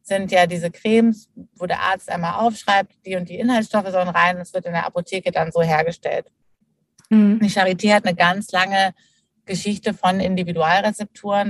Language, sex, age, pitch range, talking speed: German, female, 30-49, 170-195 Hz, 165 wpm